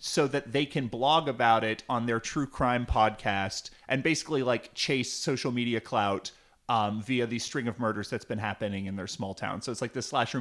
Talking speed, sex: 215 wpm, male